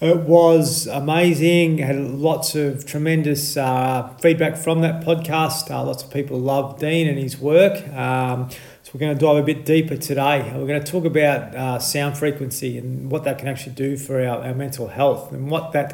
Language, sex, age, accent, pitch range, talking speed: English, male, 40-59, Australian, 125-150 Hz, 200 wpm